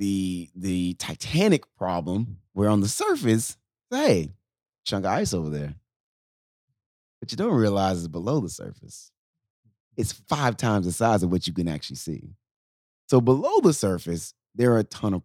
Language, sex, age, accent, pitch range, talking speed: English, male, 30-49, American, 85-120 Hz, 165 wpm